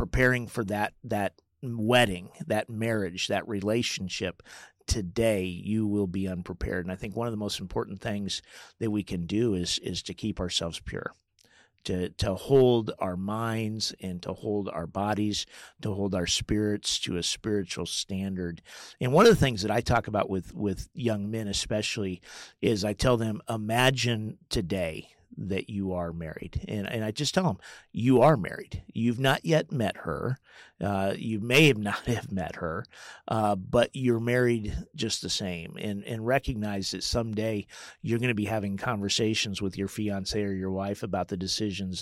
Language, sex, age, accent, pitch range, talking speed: English, male, 50-69, American, 95-115 Hz, 175 wpm